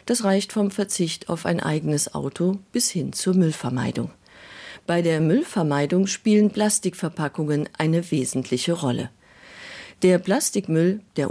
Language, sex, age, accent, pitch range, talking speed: German, female, 50-69, German, 140-200 Hz, 120 wpm